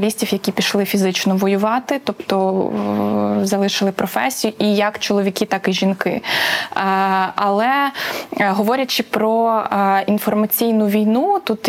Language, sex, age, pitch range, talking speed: Ukrainian, female, 20-39, 195-225 Hz, 100 wpm